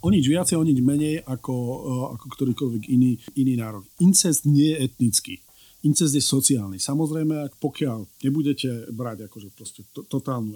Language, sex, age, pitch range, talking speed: Slovak, male, 40-59, 130-160 Hz, 150 wpm